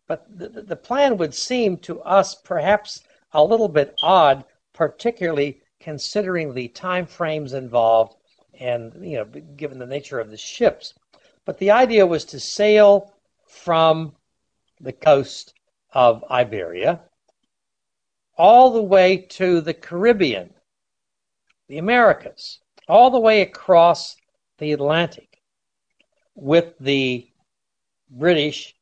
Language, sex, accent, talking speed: English, male, American, 115 wpm